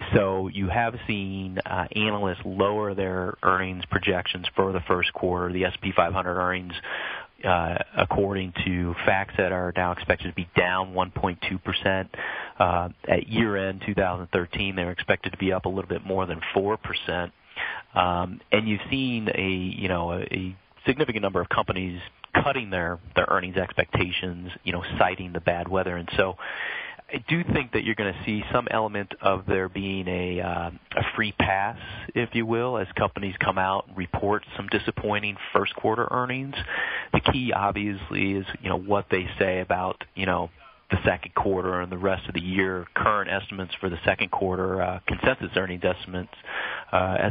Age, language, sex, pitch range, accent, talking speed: 30-49, English, male, 90-100 Hz, American, 170 wpm